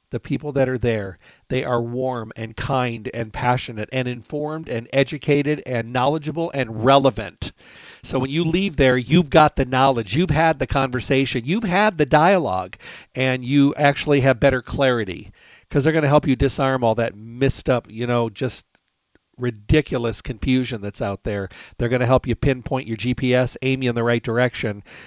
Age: 50-69